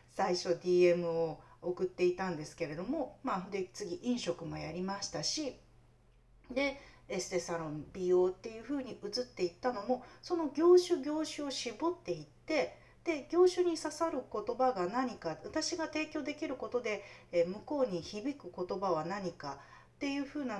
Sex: female